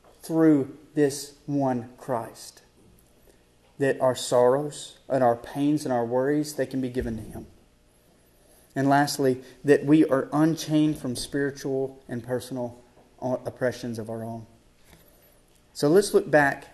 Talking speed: 135 wpm